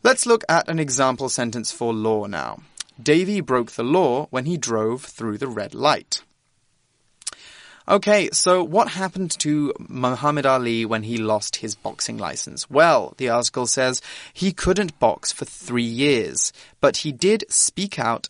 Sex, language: male, Chinese